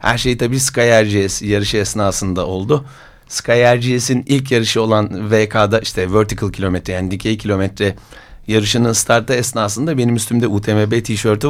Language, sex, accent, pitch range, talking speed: Turkish, male, native, 100-130 Hz, 140 wpm